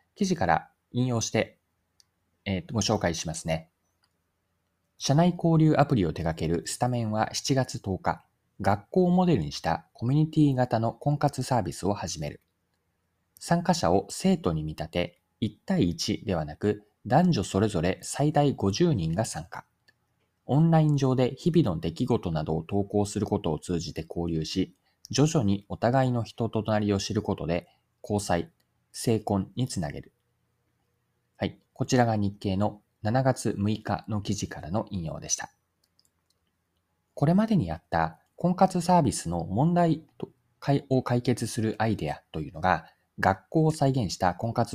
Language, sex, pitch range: Japanese, male, 85-135 Hz